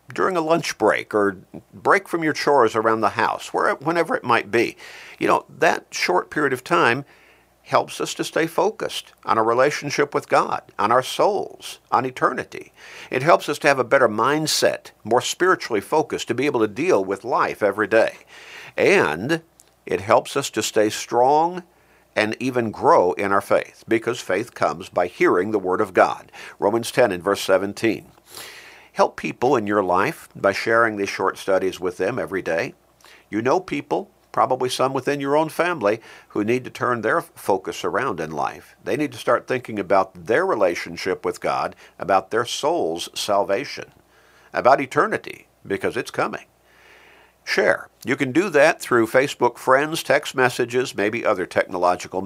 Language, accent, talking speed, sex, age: English, American, 170 wpm, male, 50-69